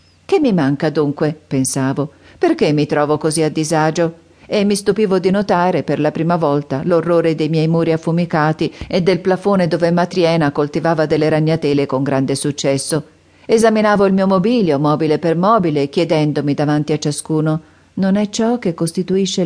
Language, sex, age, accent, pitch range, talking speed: Italian, female, 50-69, native, 150-190 Hz, 160 wpm